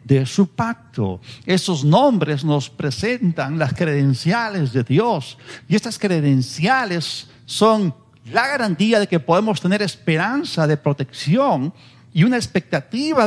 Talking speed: 120 wpm